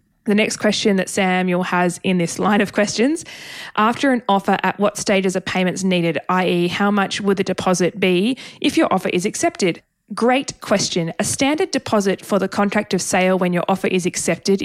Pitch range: 180-210 Hz